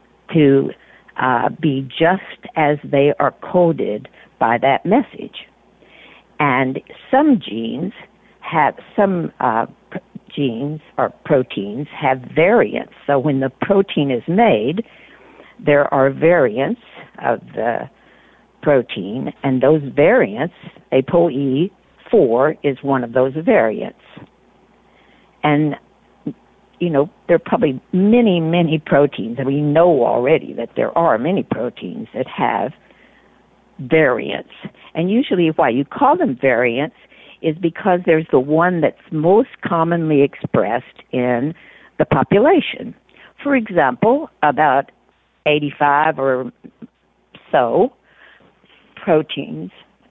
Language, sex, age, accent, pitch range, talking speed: English, female, 60-79, American, 140-175 Hz, 110 wpm